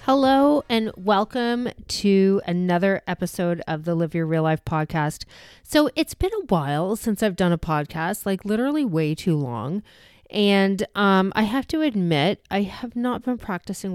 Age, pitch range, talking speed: 30-49, 165-220 Hz, 170 wpm